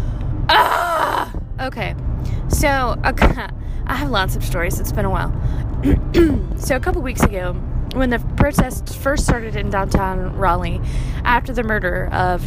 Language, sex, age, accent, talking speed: English, female, 20-39, American, 140 wpm